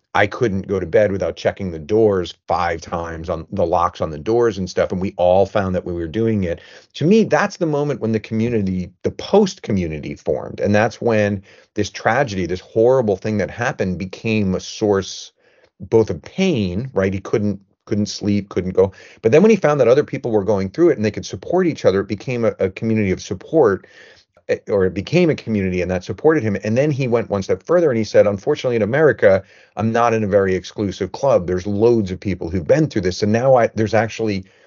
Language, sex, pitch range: English, male, 95-115 Hz